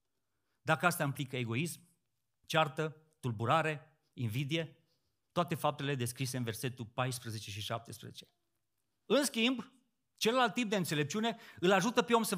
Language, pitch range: Romanian, 125-195 Hz